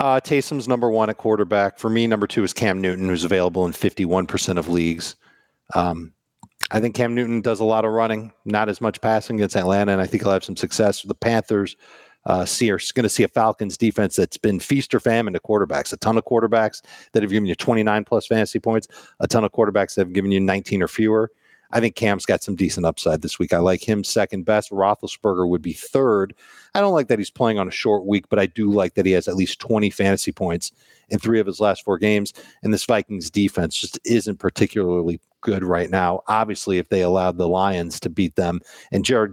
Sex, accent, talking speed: male, American, 225 wpm